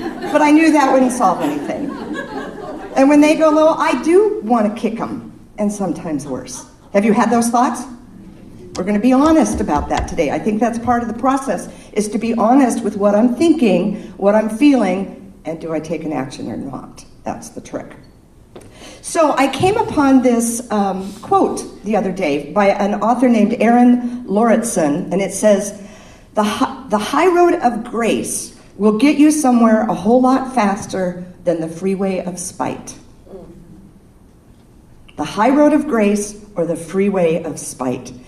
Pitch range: 185-255 Hz